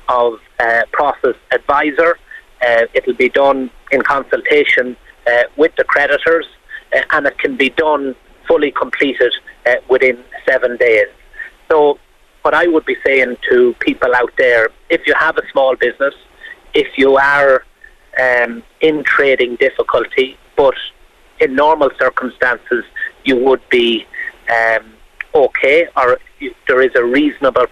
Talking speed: 135 wpm